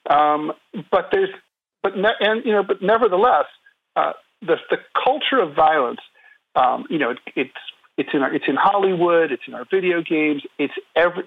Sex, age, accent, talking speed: male, 50-69, American, 180 wpm